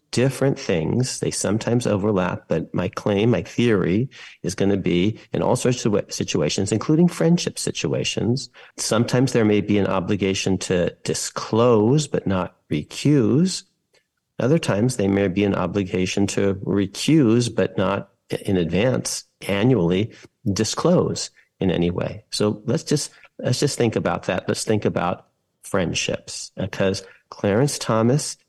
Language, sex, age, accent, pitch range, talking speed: English, male, 50-69, American, 95-120 Hz, 140 wpm